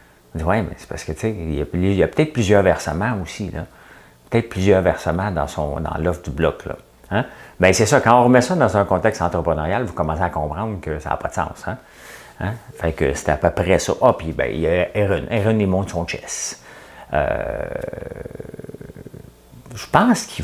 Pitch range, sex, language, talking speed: 80-105 Hz, male, French, 215 wpm